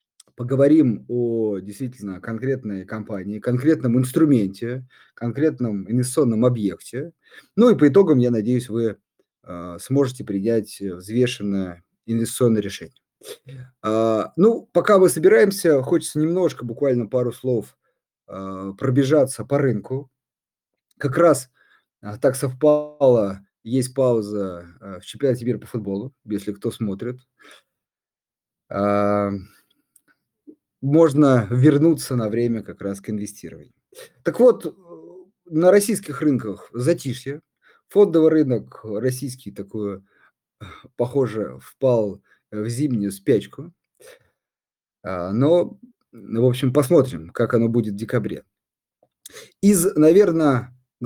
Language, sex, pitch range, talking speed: Russian, male, 105-140 Hz, 95 wpm